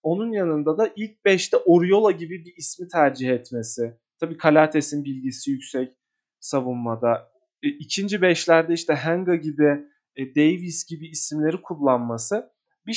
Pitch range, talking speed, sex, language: 145-215 Hz, 120 wpm, male, Turkish